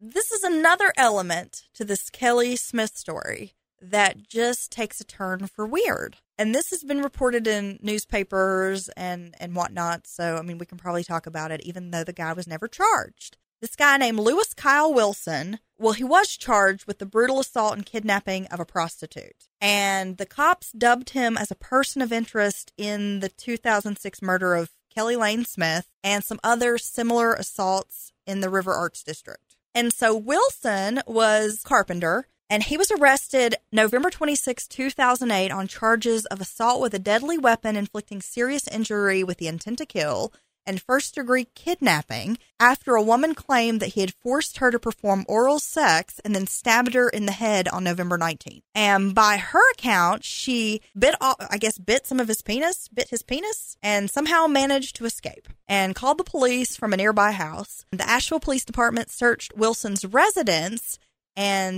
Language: English